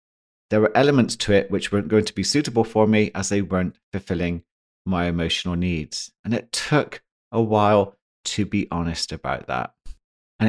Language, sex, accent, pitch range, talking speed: English, male, British, 90-115 Hz, 175 wpm